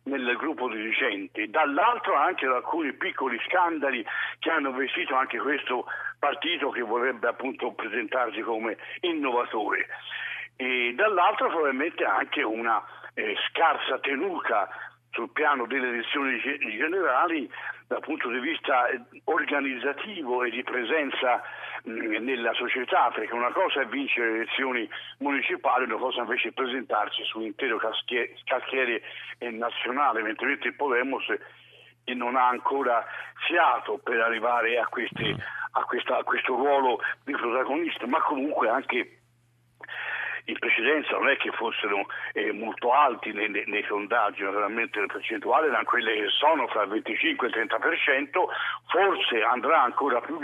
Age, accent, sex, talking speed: 60-79, native, male, 130 wpm